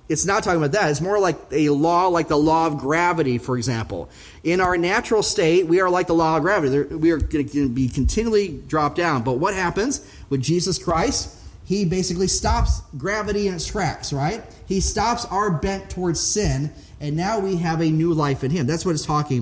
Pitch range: 145-185 Hz